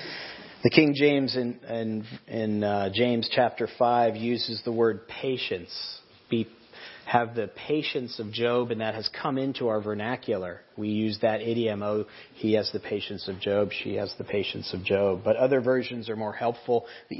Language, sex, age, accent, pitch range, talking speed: English, male, 40-59, American, 105-125 Hz, 175 wpm